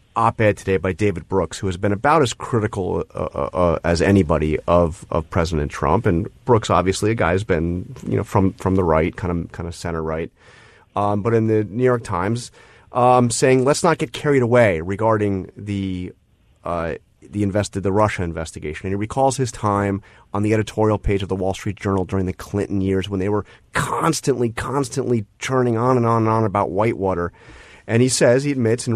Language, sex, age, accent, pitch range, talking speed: English, male, 30-49, American, 100-125 Hz, 200 wpm